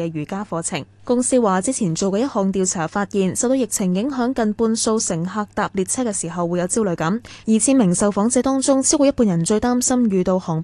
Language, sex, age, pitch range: Chinese, female, 10-29, 175-240 Hz